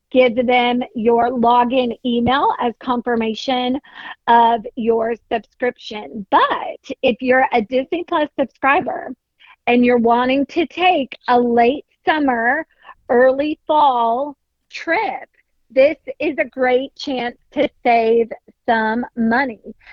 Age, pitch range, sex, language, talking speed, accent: 40-59, 235-270 Hz, female, English, 110 wpm, American